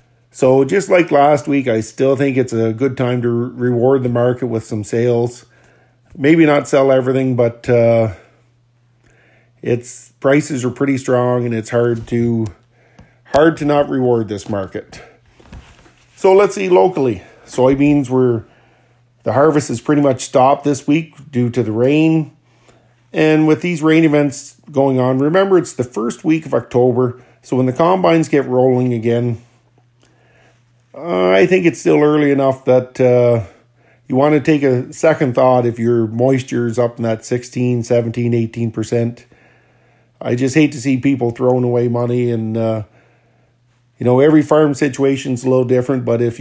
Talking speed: 160 wpm